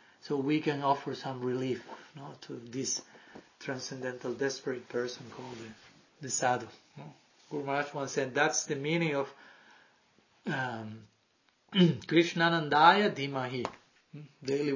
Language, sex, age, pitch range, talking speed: English, male, 40-59, 135-160 Hz, 120 wpm